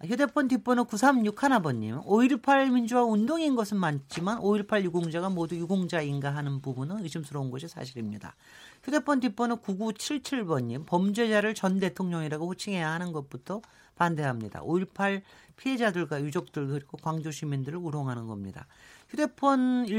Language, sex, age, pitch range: Korean, male, 40-59, 155-225 Hz